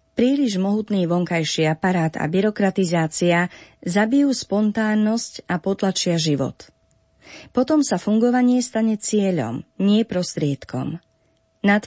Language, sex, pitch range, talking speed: Slovak, female, 165-210 Hz, 95 wpm